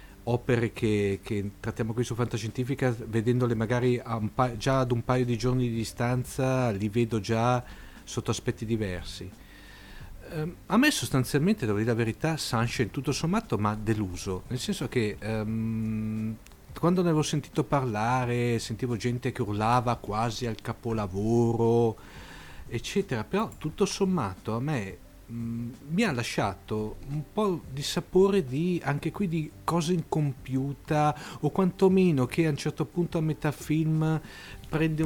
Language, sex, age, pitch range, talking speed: Italian, male, 40-59, 115-145 Hz, 140 wpm